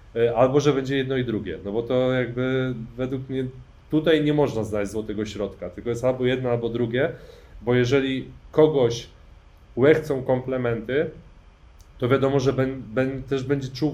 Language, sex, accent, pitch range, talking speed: Polish, male, native, 110-130 Hz, 160 wpm